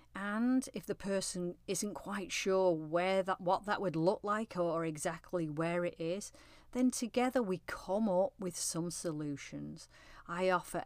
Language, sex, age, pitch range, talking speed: English, female, 40-59, 160-210 Hz, 160 wpm